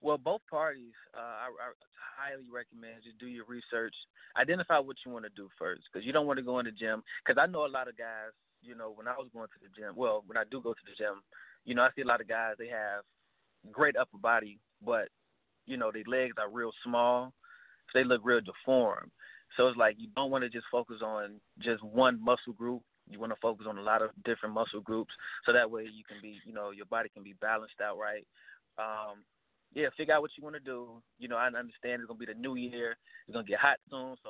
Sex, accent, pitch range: male, American, 110-125 Hz